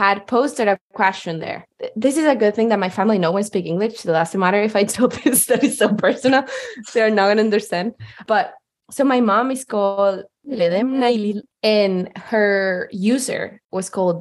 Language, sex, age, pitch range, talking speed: English, female, 20-39, 190-245 Hz, 200 wpm